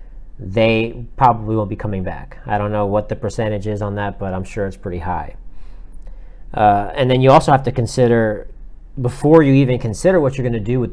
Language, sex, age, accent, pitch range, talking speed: English, male, 30-49, American, 105-130 Hz, 215 wpm